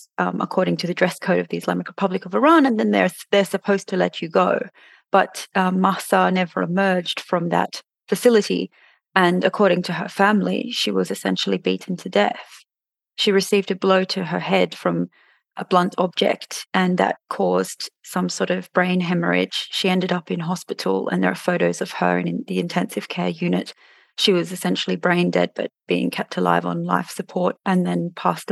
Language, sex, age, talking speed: English, female, 30-49, 190 wpm